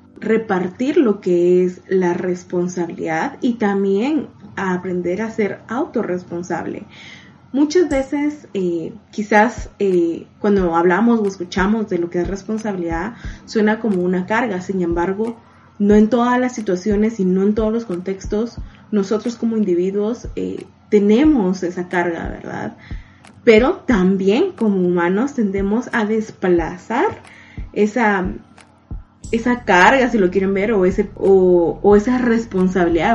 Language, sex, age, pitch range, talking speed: Spanish, female, 20-39, 180-230 Hz, 130 wpm